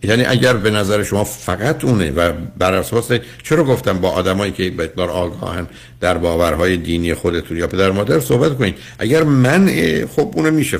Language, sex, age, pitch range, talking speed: Persian, male, 60-79, 85-115 Hz, 180 wpm